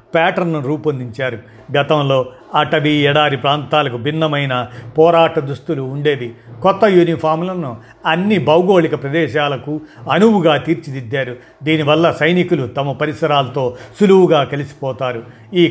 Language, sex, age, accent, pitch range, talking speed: Telugu, male, 50-69, native, 130-165 Hz, 90 wpm